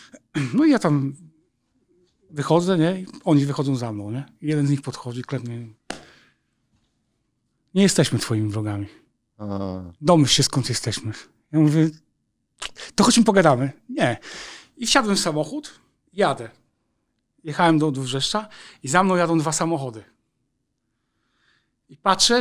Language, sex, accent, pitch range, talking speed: Polish, male, native, 135-185 Hz, 125 wpm